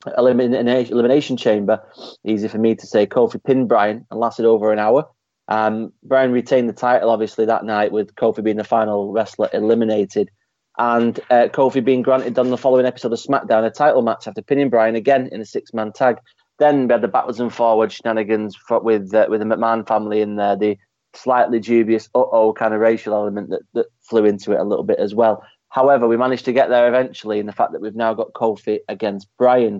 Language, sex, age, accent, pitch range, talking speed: English, male, 20-39, British, 105-120 Hz, 210 wpm